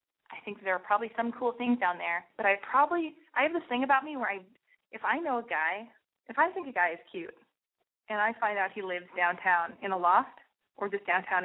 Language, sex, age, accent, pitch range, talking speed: English, female, 20-39, American, 180-250 Hz, 240 wpm